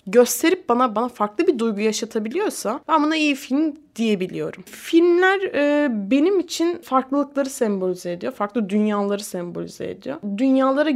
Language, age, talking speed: Turkish, 20-39, 130 wpm